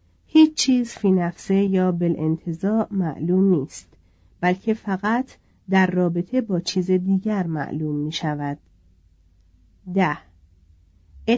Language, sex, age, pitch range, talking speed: Persian, female, 40-59, 150-210 Hz, 105 wpm